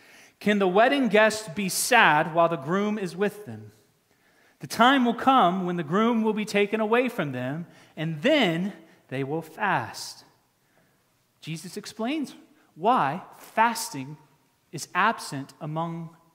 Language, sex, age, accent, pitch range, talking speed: English, male, 30-49, American, 165-215 Hz, 135 wpm